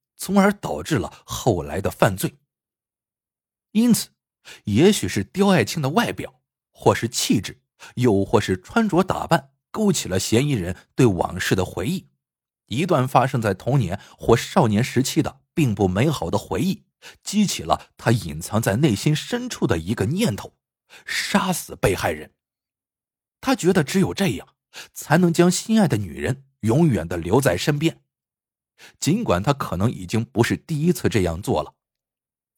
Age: 50-69